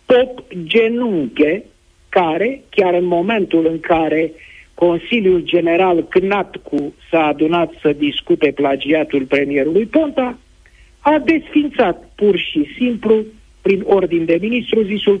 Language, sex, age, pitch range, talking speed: Romanian, male, 50-69, 150-225 Hz, 110 wpm